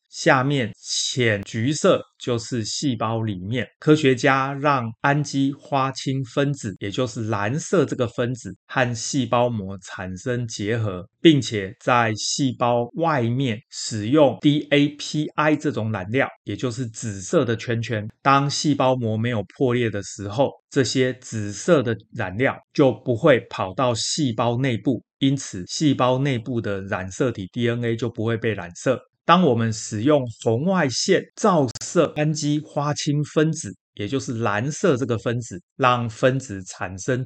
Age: 30-49